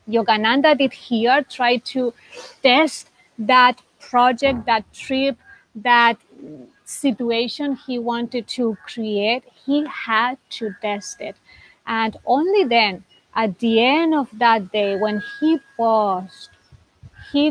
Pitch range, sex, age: 220-270 Hz, female, 30-49